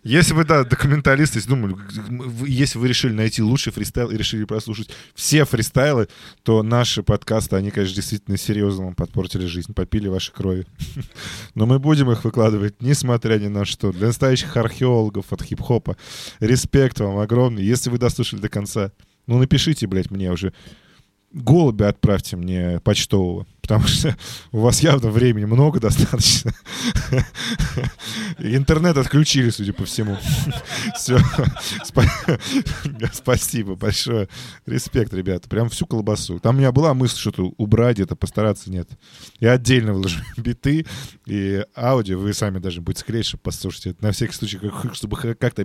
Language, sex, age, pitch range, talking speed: Russian, male, 20-39, 100-130 Hz, 145 wpm